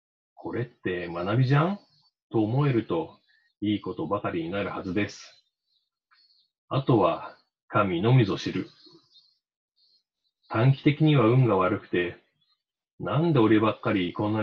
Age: 40-59